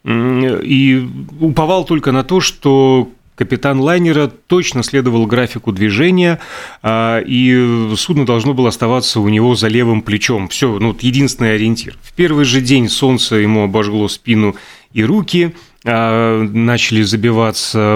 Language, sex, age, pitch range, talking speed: Russian, male, 30-49, 110-135 Hz, 130 wpm